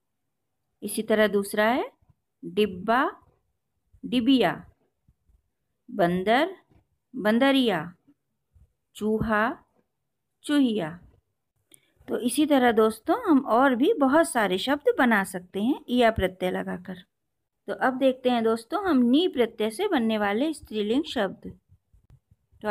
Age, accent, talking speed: 50-69, native, 105 wpm